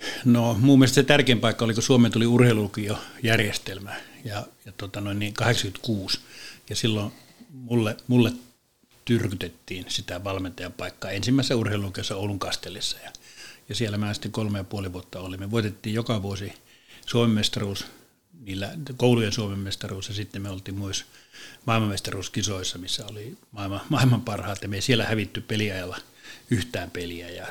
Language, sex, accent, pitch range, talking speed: Finnish, male, native, 100-120 Hz, 150 wpm